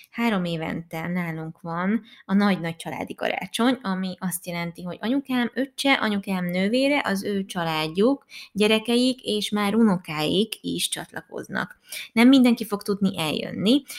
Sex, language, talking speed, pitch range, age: female, Hungarian, 130 wpm, 175-220 Hz, 20-39